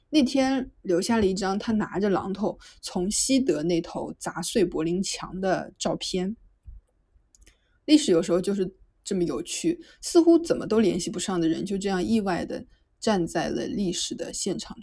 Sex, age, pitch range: female, 20-39, 175-245 Hz